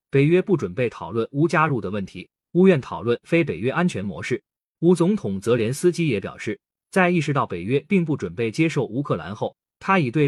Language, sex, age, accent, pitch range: Chinese, male, 30-49, native, 125-170 Hz